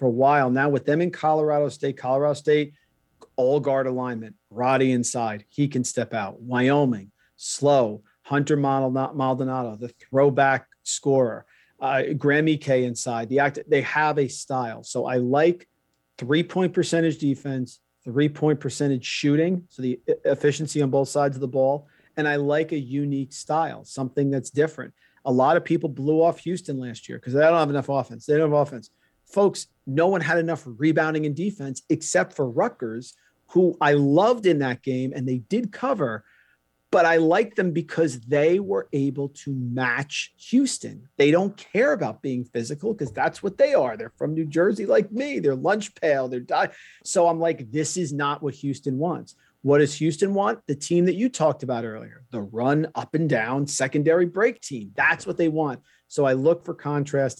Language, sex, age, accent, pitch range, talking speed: English, male, 50-69, American, 130-160 Hz, 185 wpm